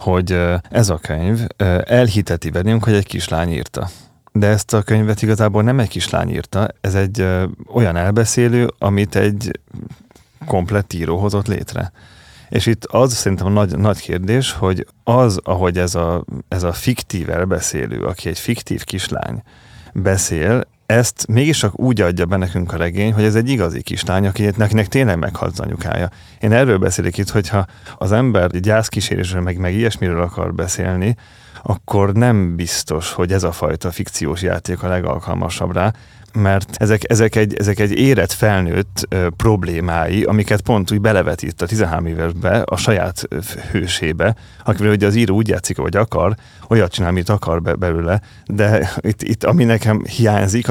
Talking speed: 155 wpm